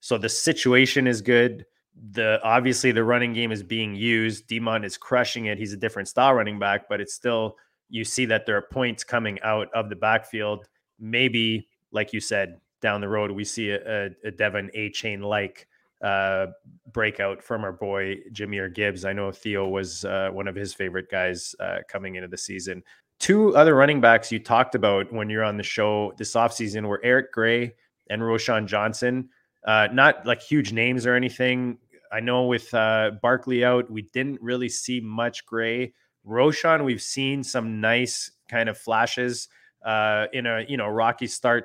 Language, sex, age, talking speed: English, male, 20-39, 180 wpm